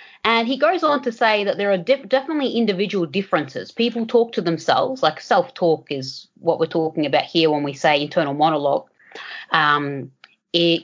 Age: 30-49